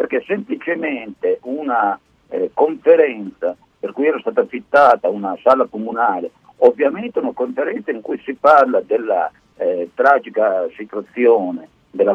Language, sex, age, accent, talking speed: Italian, male, 50-69, native, 125 wpm